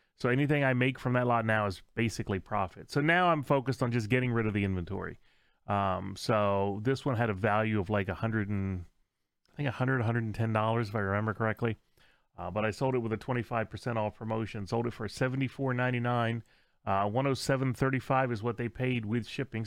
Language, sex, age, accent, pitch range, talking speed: English, male, 30-49, American, 105-130 Hz, 185 wpm